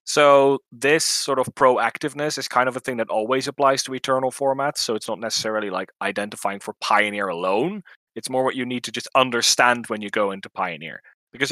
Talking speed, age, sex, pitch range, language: 205 wpm, 20-39, male, 105-150 Hz, English